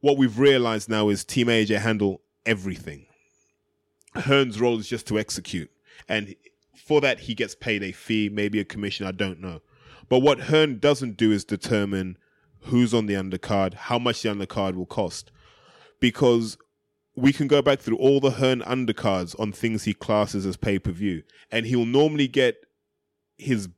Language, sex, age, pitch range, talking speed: English, male, 20-39, 100-125 Hz, 170 wpm